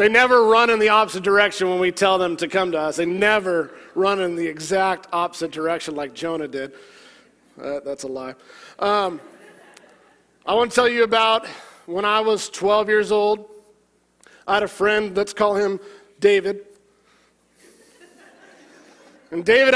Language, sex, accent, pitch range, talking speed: English, male, American, 185-220 Hz, 160 wpm